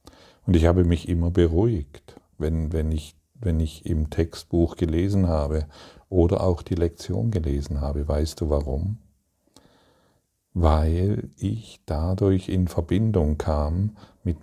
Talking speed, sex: 120 wpm, male